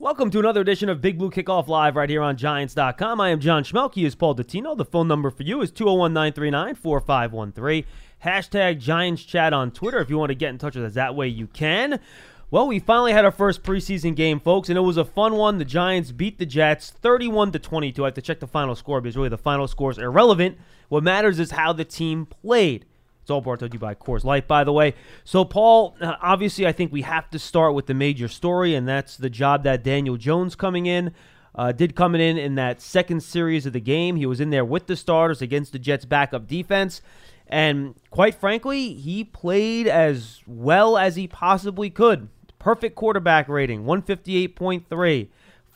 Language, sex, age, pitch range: English, male, 20-39, 140-190 Hz